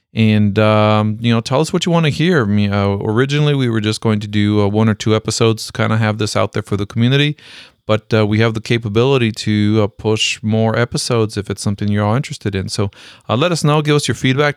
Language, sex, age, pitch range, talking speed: English, male, 40-59, 105-125 Hz, 250 wpm